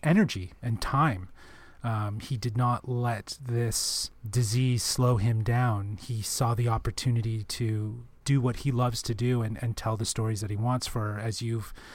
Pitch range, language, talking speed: 110-135 Hz, English, 175 wpm